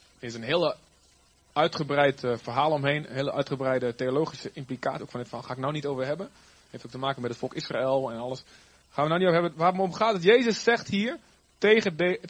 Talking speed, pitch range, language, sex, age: 220 wpm, 130-185 Hz, Dutch, male, 30-49